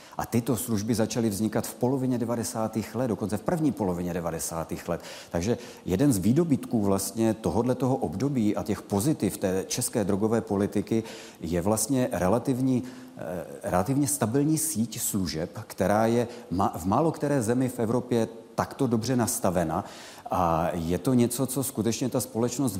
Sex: male